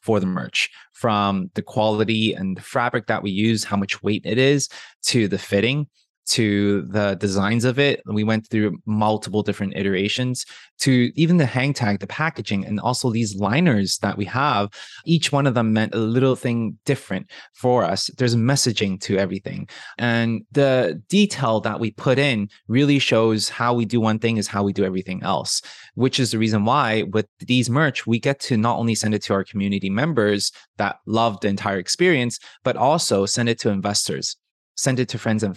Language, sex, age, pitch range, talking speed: English, male, 20-39, 100-125 Hz, 195 wpm